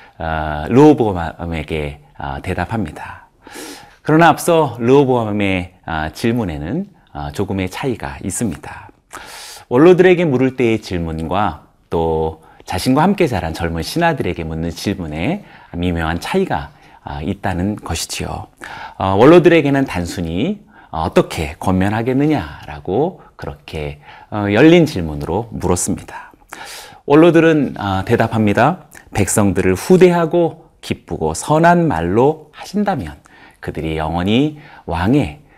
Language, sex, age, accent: Korean, male, 40-59, native